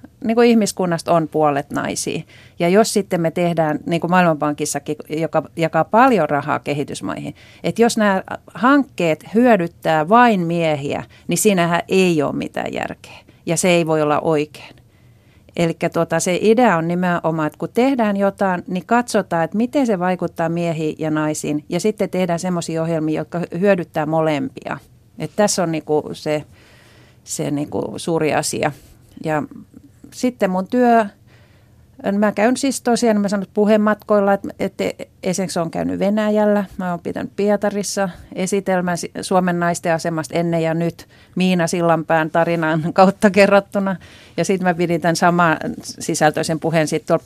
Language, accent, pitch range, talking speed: Finnish, native, 155-200 Hz, 145 wpm